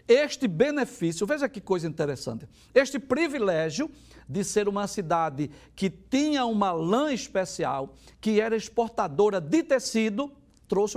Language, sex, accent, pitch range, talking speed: Portuguese, male, Brazilian, 155-215 Hz, 125 wpm